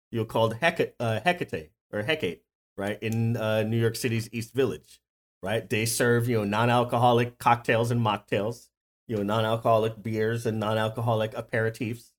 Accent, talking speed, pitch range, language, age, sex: American, 160 wpm, 110-135 Hz, English, 30-49, male